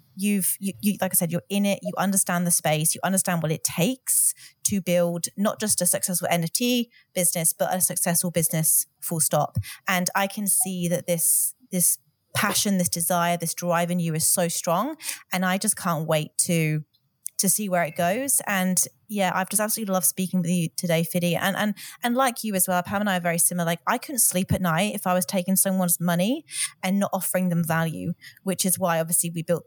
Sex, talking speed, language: female, 210 wpm, English